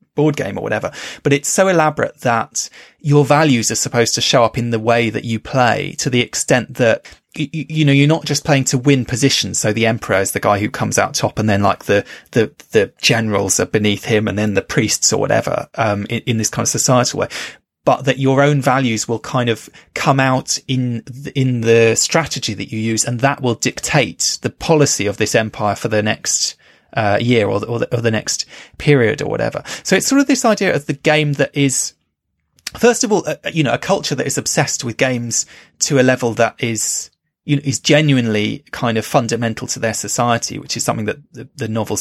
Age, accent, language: 20-39, British, English